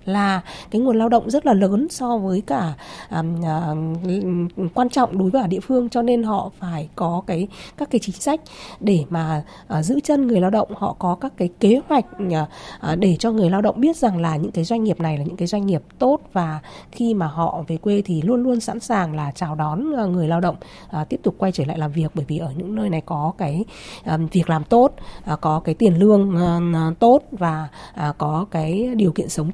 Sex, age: female, 20-39